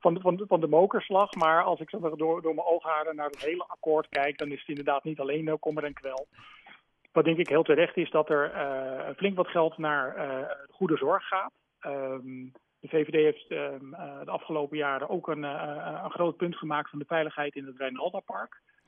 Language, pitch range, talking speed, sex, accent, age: Dutch, 145-170 Hz, 205 wpm, male, Dutch, 40-59